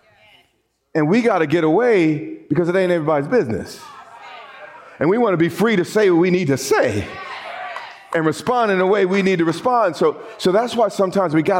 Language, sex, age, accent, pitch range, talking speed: English, male, 40-59, American, 105-170 Hz, 205 wpm